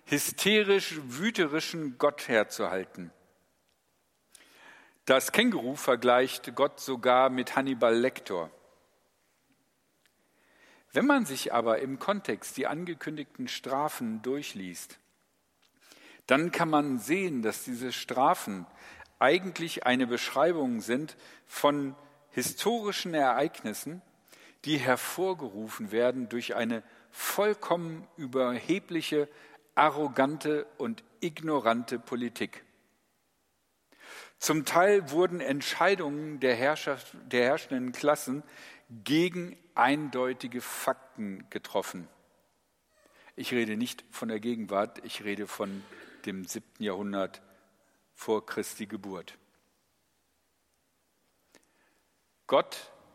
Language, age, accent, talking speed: German, 50-69, German, 85 wpm